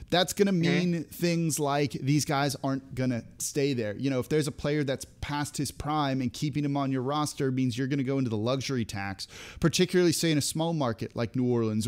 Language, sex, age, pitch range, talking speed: English, male, 30-49, 120-150 Hz, 235 wpm